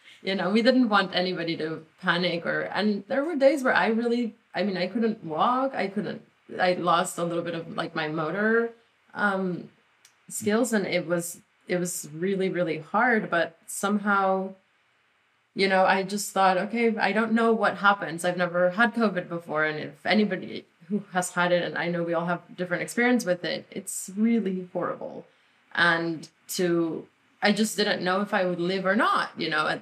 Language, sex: English, female